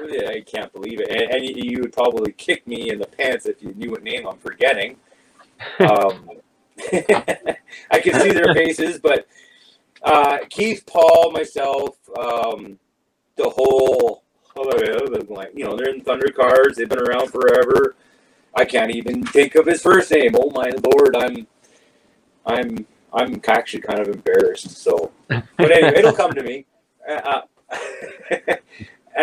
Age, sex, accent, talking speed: 30-49, male, American, 145 wpm